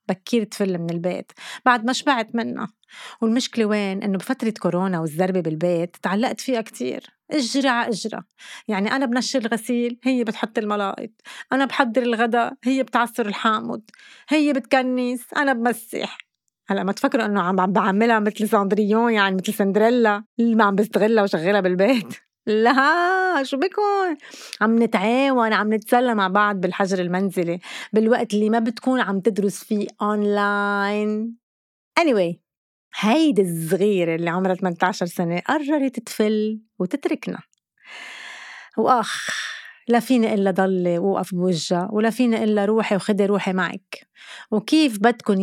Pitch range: 195-255 Hz